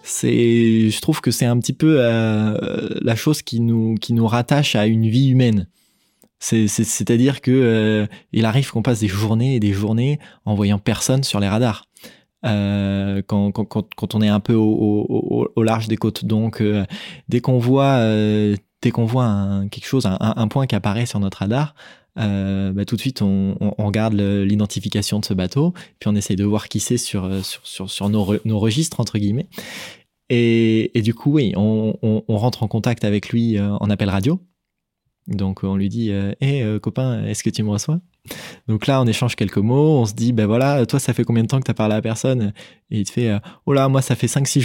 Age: 20-39